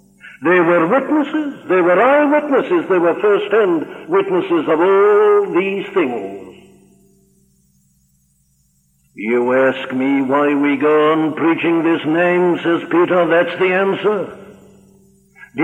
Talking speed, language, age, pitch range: 115 wpm, English, 60-79, 130-205 Hz